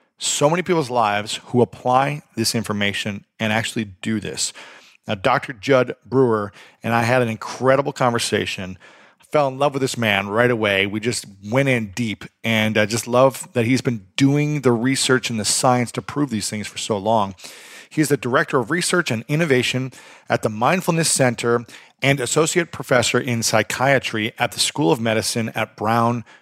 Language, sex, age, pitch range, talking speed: English, male, 40-59, 115-145 Hz, 180 wpm